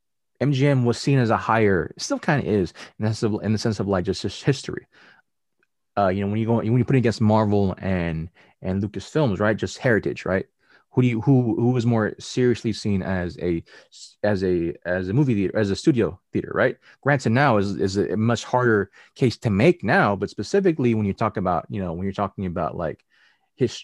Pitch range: 100-135 Hz